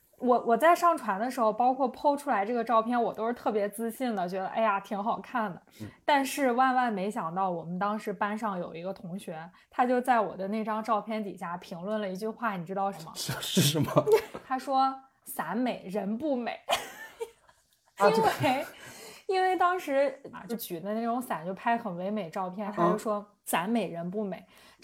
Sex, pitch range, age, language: female, 195-255 Hz, 20-39, Chinese